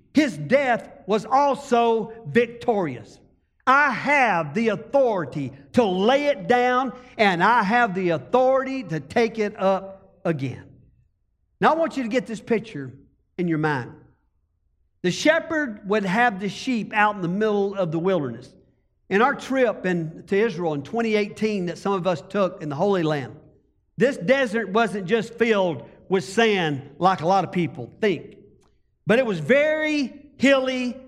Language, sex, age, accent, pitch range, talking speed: English, male, 50-69, American, 185-255 Hz, 155 wpm